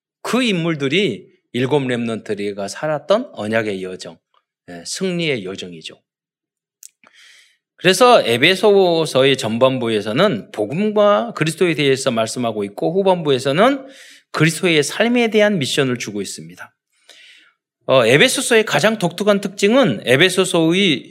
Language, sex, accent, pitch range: Korean, male, native, 135-210 Hz